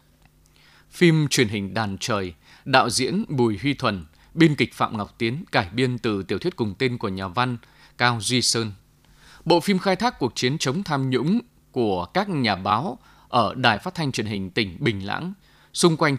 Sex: male